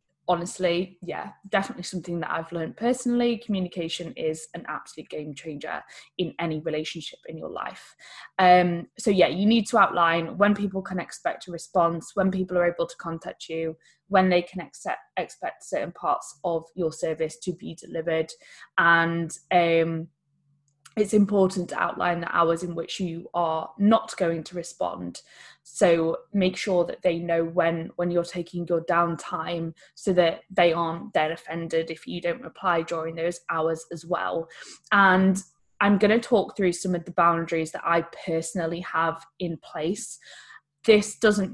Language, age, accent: English, 20-39, British